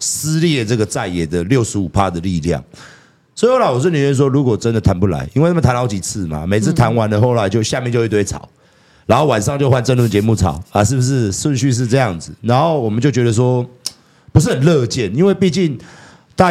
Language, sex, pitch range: Chinese, male, 100-140 Hz